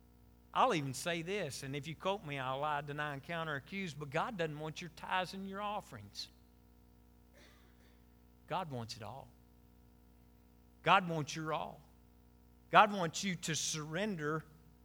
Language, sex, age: English, male, 50-69